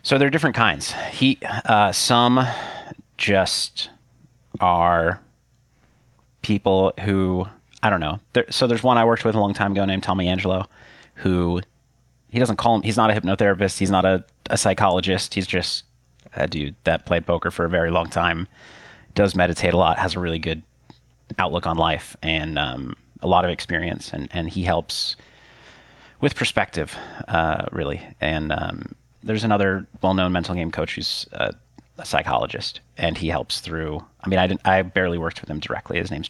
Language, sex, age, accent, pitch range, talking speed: English, male, 30-49, American, 85-110 Hz, 175 wpm